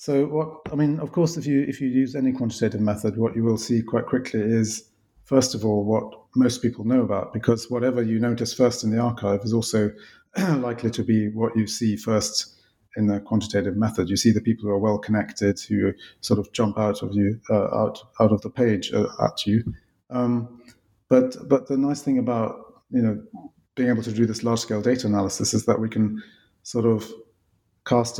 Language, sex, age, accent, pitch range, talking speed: English, male, 30-49, British, 105-120 Hz, 210 wpm